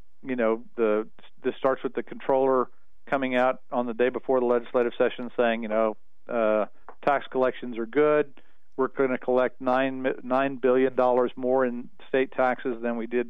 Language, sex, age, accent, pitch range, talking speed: English, male, 50-69, American, 120-140 Hz, 175 wpm